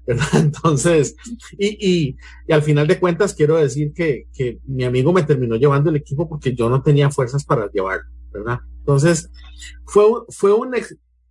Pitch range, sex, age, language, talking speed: 140-195 Hz, male, 40-59, English, 170 wpm